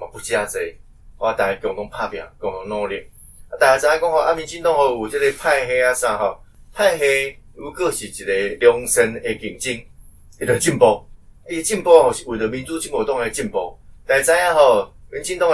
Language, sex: Chinese, male